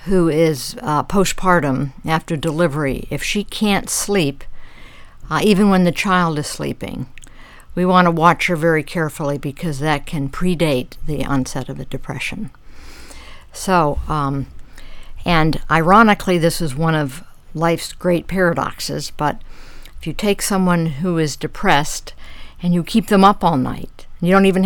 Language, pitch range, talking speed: English, 150-180 Hz, 150 wpm